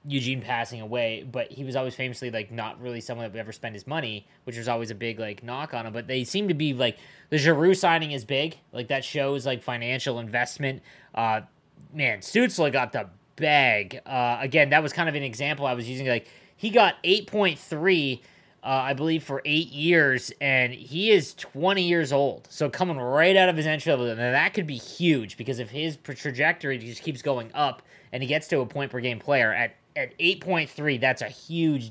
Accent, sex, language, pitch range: American, male, English, 125-160 Hz